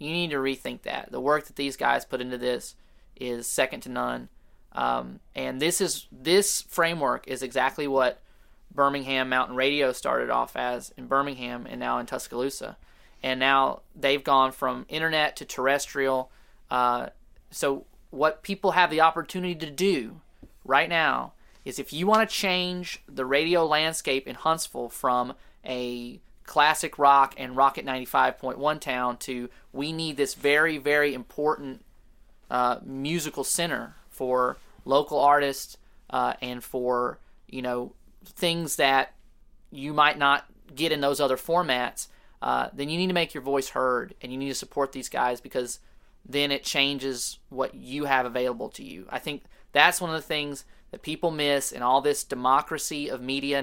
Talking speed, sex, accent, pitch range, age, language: 165 wpm, male, American, 125-155 Hz, 20-39, English